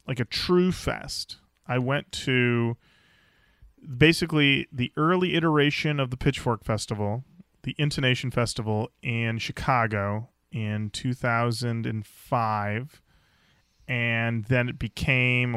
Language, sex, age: English, male, 30-49